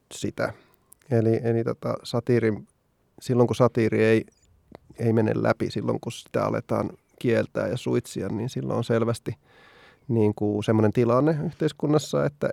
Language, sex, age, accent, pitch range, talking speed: Finnish, male, 30-49, native, 115-140 Hz, 135 wpm